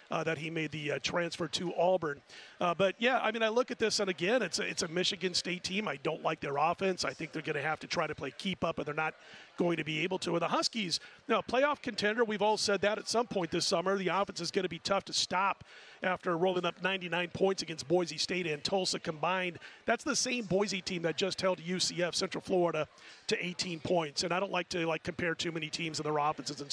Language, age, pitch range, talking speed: English, 40-59, 165-195 Hz, 260 wpm